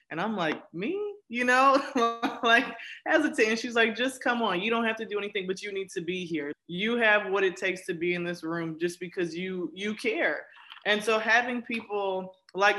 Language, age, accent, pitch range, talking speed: English, 20-39, American, 175-210 Hz, 210 wpm